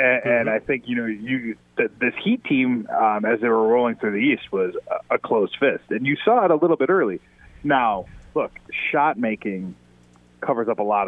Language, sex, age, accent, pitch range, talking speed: English, male, 20-39, American, 95-125 Hz, 200 wpm